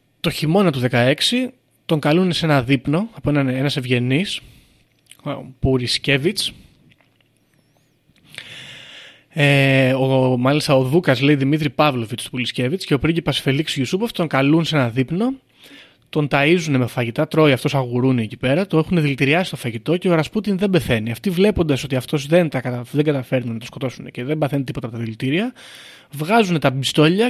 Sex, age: male, 30-49